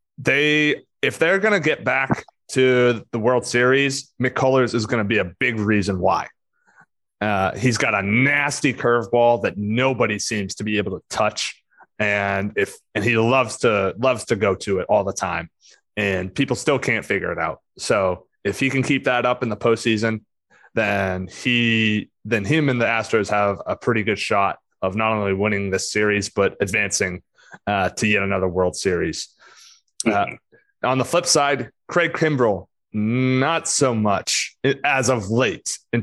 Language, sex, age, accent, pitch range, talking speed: English, male, 20-39, American, 105-135 Hz, 170 wpm